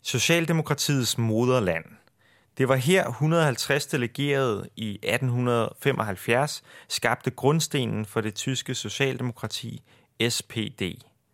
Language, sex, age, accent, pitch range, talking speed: Danish, male, 30-49, native, 110-140 Hz, 85 wpm